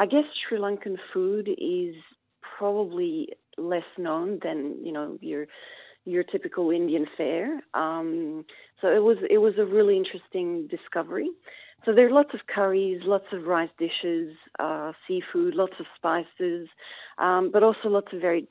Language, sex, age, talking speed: English, female, 40-59, 155 wpm